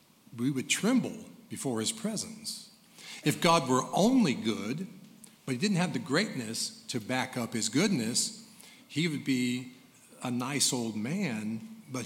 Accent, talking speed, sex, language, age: American, 150 wpm, male, English, 50-69